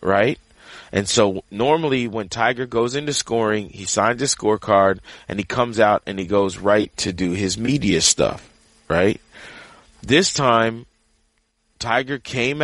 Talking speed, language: 145 wpm, English